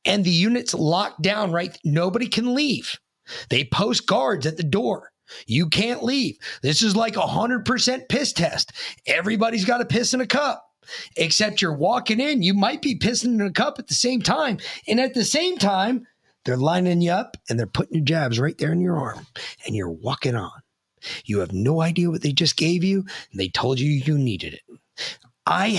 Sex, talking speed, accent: male, 200 wpm, American